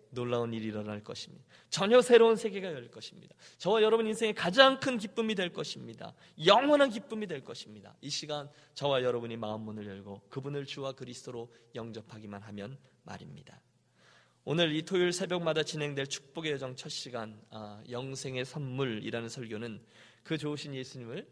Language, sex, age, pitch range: Korean, male, 20-39, 110-145 Hz